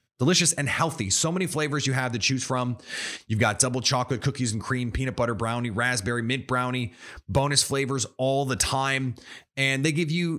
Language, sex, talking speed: English, male, 190 wpm